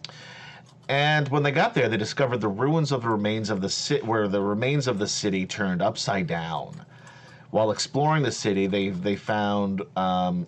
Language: English